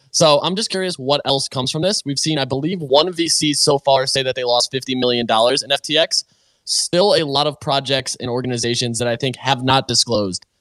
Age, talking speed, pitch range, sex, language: 20-39, 215 wpm, 120-145 Hz, male, English